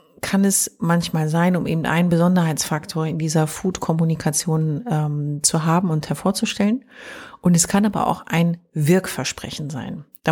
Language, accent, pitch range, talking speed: German, German, 150-180 Hz, 140 wpm